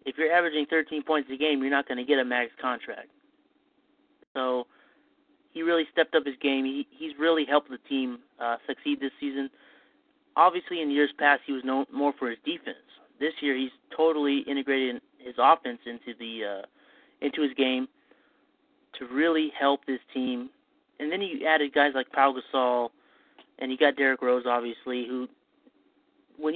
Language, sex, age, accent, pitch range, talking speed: English, male, 30-49, American, 130-165 Hz, 175 wpm